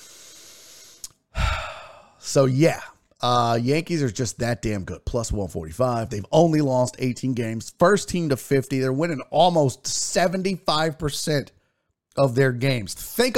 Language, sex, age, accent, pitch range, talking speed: English, male, 40-59, American, 125-175 Hz, 125 wpm